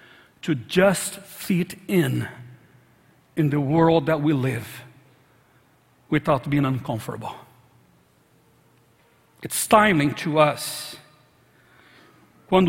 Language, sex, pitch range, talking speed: English, male, 155-250 Hz, 85 wpm